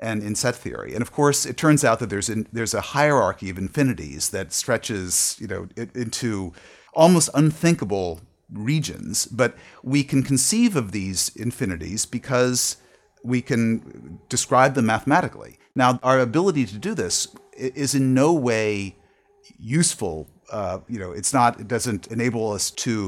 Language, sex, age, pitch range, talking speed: English, male, 40-59, 105-135 Hz, 155 wpm